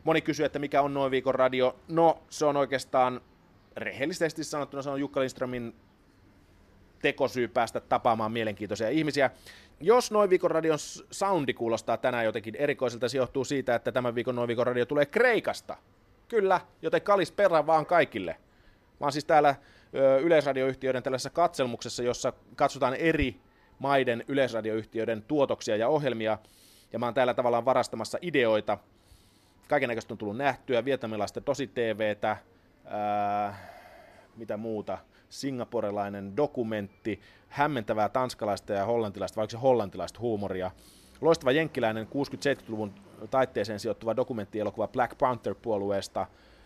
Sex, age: male, 30-49